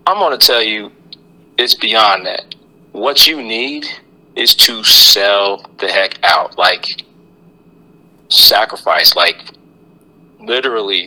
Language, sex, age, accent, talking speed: English, male, 40-59, American, 115 wpm